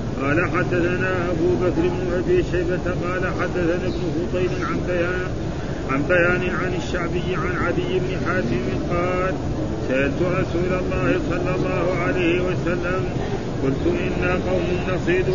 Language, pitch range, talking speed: Arabic, 145-180 Hz, 115 wpm